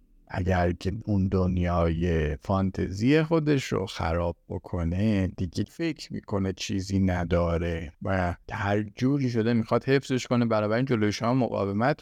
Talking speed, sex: 130 wpm, male